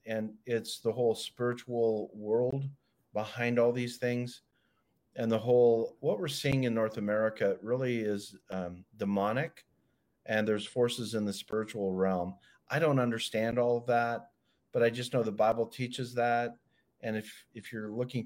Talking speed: 160 wpm